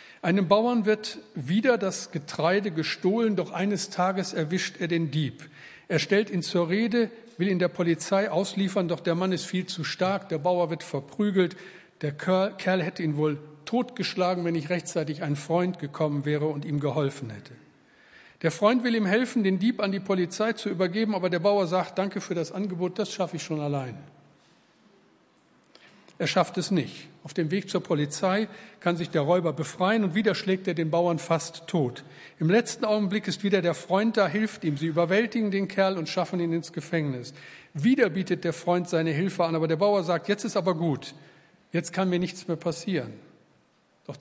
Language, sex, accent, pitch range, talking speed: German, male, German, 160-195 Hz, 190 wpm